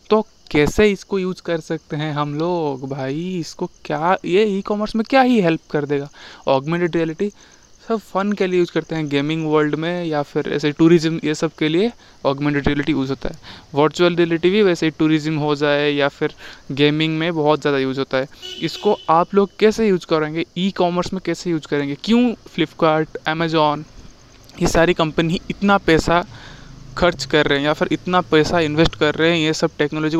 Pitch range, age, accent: 150-180 Hz, 20-39, native